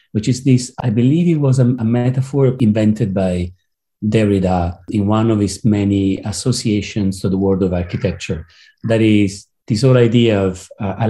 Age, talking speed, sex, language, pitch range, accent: 40-59, 175 wpm, male, Romanian, 100-125 Hz, Italian